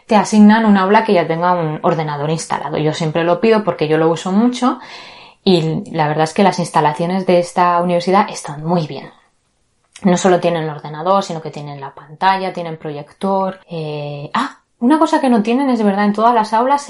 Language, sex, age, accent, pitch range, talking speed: Spanish, female, 20-39, Spanish, 175-225 Hz, 200 wpm